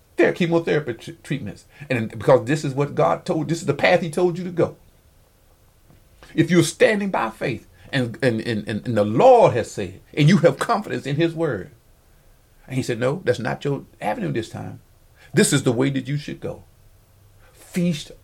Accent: American